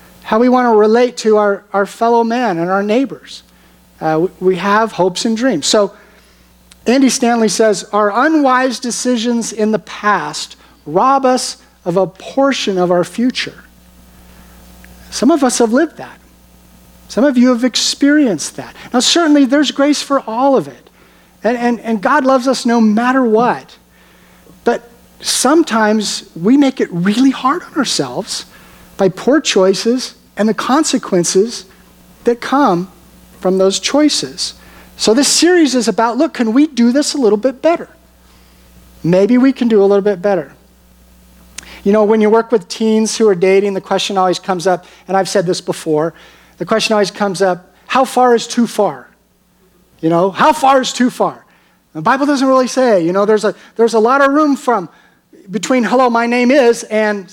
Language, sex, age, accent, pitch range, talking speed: English, male, 50-69, American, 185-255 Hz, 175 wpm